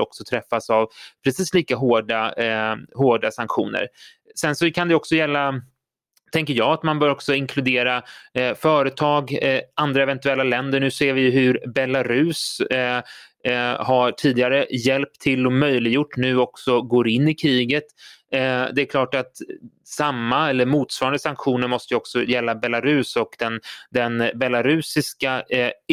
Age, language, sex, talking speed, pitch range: 30-49, Swedish, male, 155 wpm, 120-145 Hz